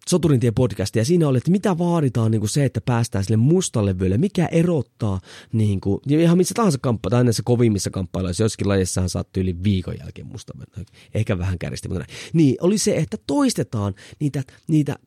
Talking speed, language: 185 wpm, Finnish